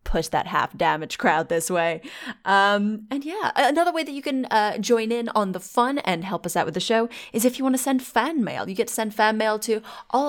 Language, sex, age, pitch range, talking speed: English, female, 20-39, 180-245 Hz, 255 wpm